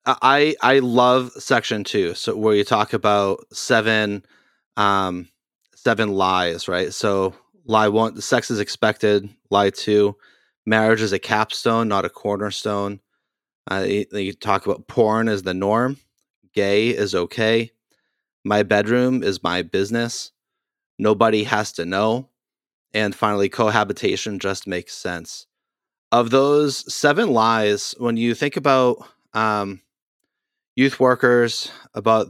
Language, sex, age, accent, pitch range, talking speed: English, male, 30-49, American, 100-120 Hz, 130 wpm